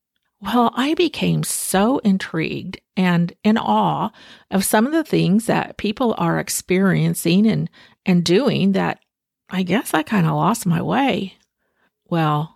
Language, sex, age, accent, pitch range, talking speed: English, female, 50-69, American, 180-240 Hz, 145 wpm